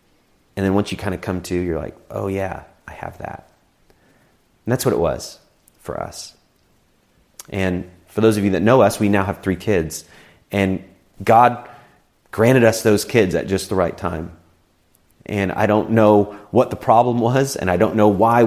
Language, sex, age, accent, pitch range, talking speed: English, male, 30-49, American, 90-115 Hz, 190 wpm